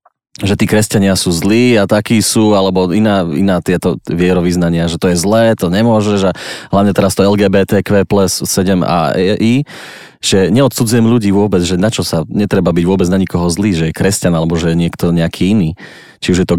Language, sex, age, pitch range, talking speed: Slovak, male, 30-49, 90-105 Hz, 190 wpm